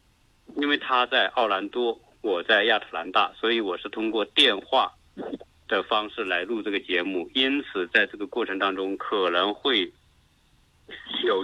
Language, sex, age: Chinese, male, 50-69